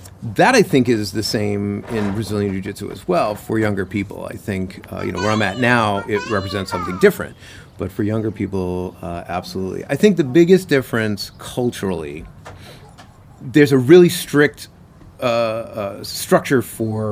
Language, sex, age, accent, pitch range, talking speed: English, male, 30-49, American, 100-130 Hz, 165 wpm